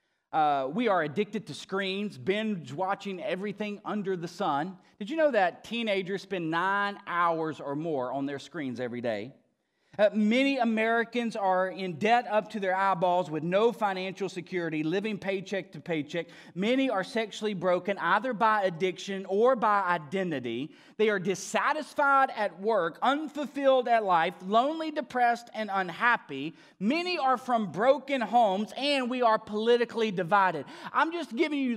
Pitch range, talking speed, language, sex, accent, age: 195-280 Hz, 150 wpm, English, male, American, 30-49